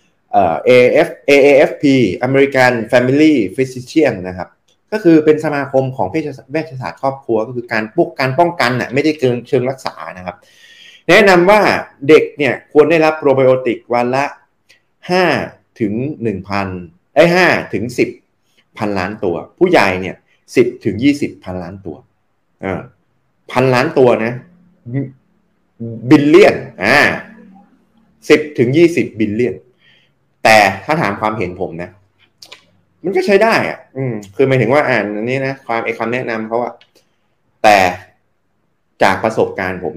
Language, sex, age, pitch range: Thai, male, 30-49, 105-150 Hz